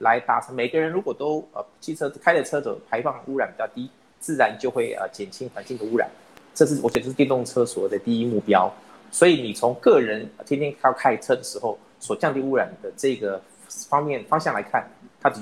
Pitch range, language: 115-170 Hz, Chinese